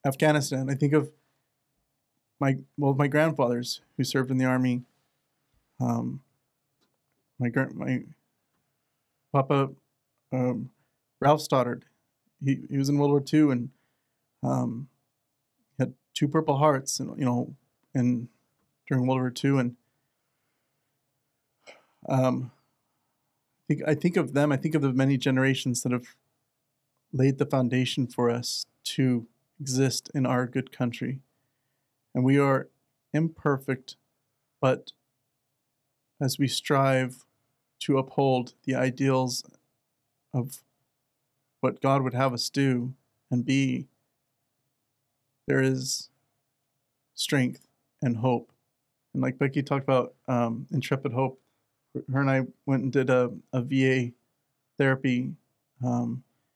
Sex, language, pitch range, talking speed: male, English, 130-140 Hz, 120 wpm